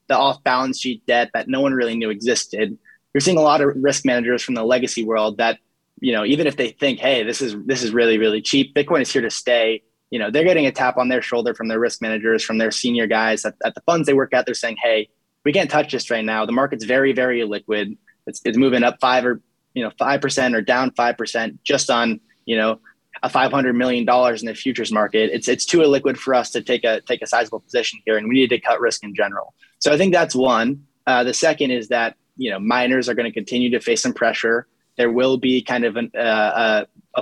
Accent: American